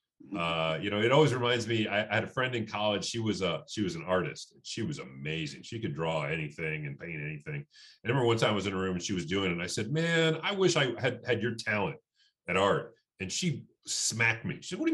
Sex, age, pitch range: male, 40-59, 110-170 Hz